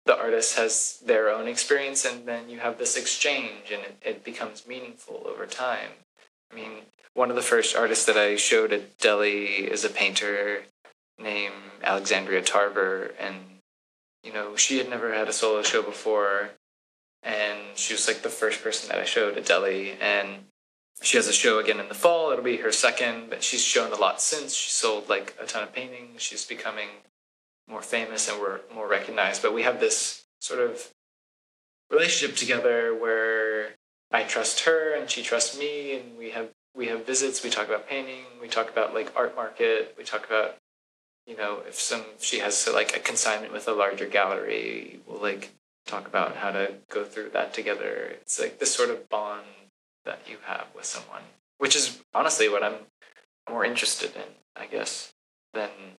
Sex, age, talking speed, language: male, 20-39, 185 wpm, English